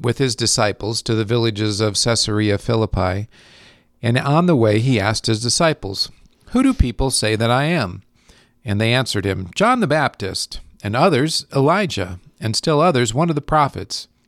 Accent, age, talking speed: American, 50-69, 170 wpm